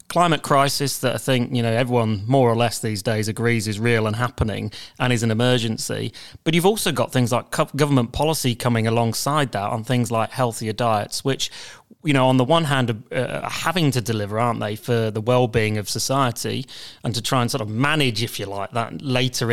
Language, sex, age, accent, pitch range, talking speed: English, male, 30-49, British, 115-145 Hz, 210 wpm